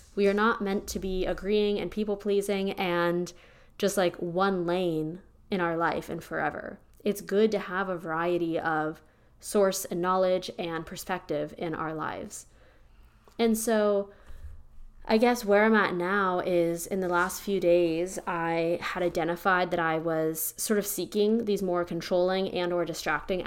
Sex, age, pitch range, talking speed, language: female, 20-39, 170-200 Hz, 160 wpm, English